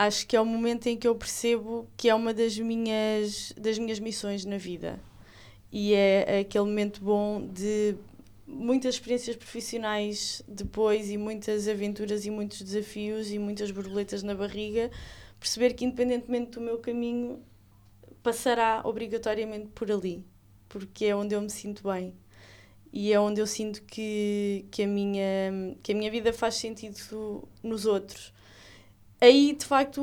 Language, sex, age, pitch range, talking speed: English, female, 20-39, 200-230 Hz, 150 wpm